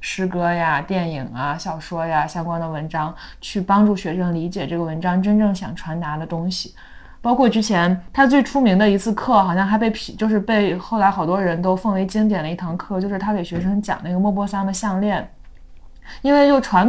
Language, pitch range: Chinese, 170-205 Hz